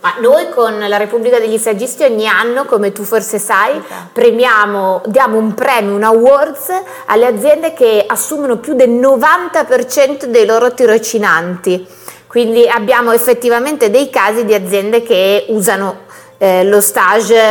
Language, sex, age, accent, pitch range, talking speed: Italian, female, 30-49, native, 210-250 Hz, 140 wpm